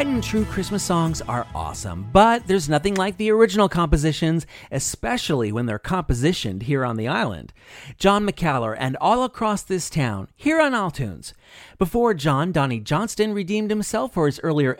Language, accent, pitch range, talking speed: English, American, 140-205 Hz, 165 wpm